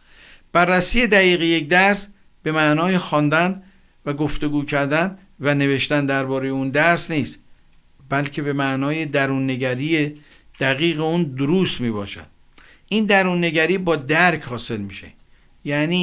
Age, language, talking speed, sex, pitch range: 50-69, Persian, 125 wpm, male, 135-175 Hz